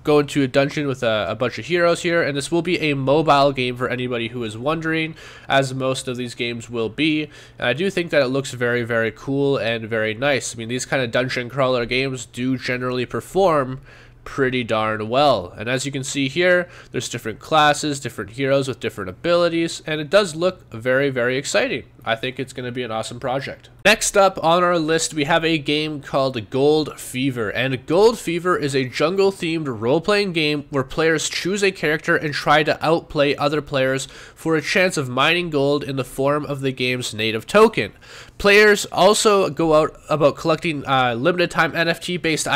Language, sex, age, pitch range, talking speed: English, male, 20-39, 125-165 Hz, 200 wpm